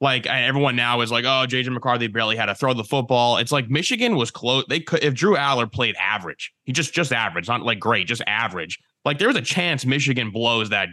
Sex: male